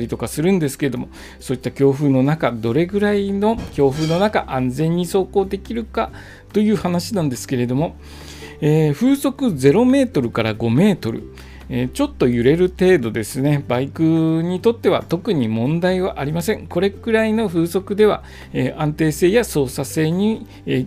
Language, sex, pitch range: Japanese, male, 130-215 Hz